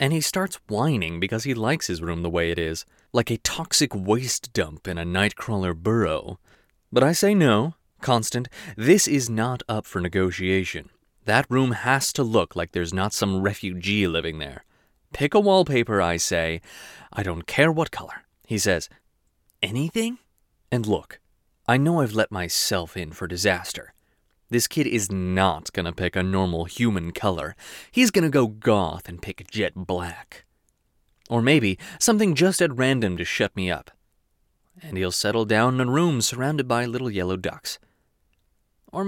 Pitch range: 90-130 Hz